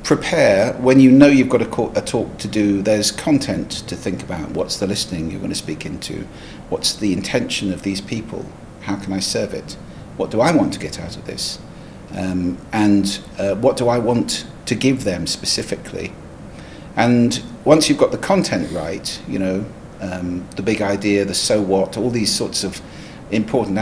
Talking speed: 190 wpm